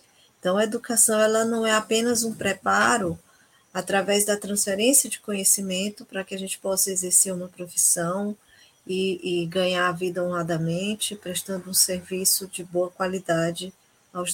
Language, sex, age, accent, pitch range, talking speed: Portuguese, female, 10-29, Brazilian, 180-220 Hz, 140 wpm